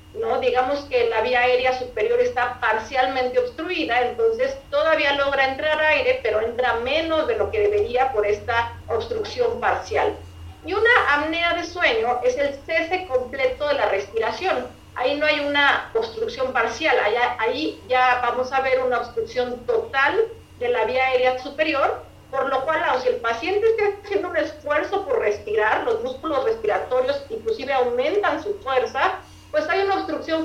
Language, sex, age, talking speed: Spanish, female, 40-59, 155 wpm